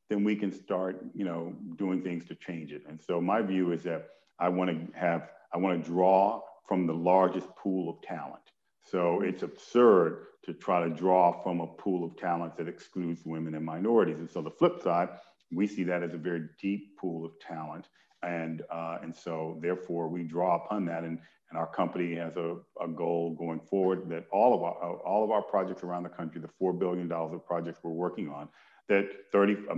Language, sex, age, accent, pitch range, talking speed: English, male, 50-69, American, 85-95 Hz, 210 wpm